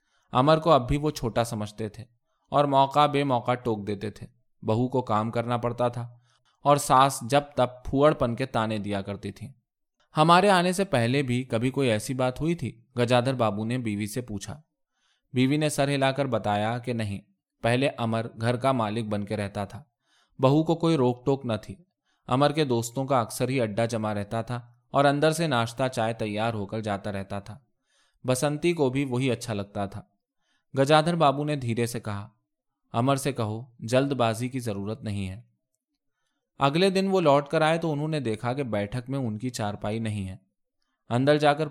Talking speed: 190 wpm